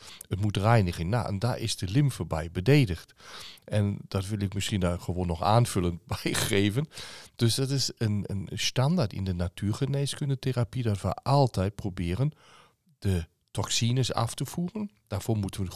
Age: 40-59